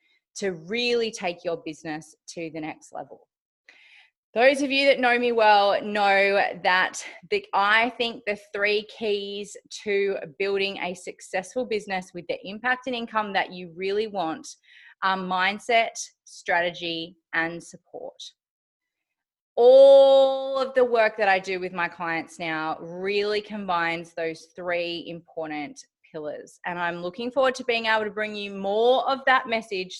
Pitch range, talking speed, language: 180-245 Hz, 145 wpm, English